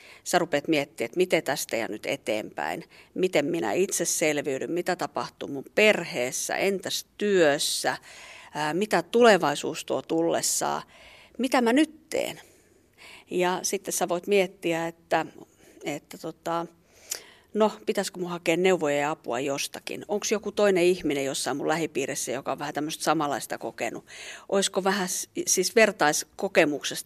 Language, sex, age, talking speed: Finnish, female, 50-69, 135 wpm